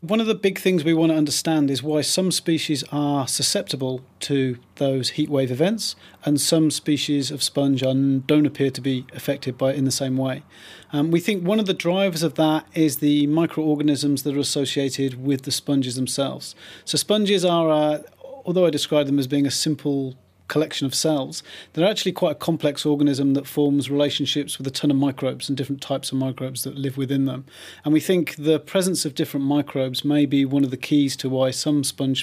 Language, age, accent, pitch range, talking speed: English, 40-59, British, 135-160 Hz, 210 wpm